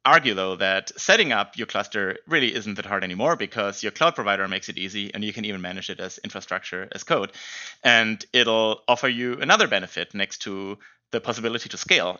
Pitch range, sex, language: 95-120 Hz, male, English